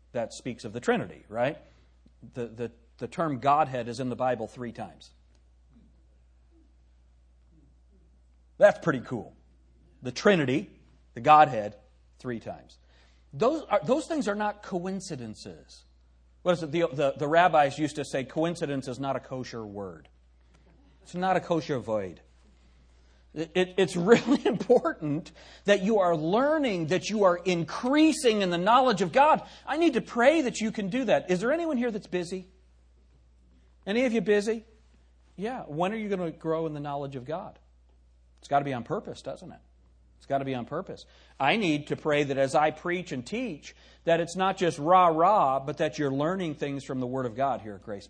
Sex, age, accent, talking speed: male, 40-59, American, 180 wpm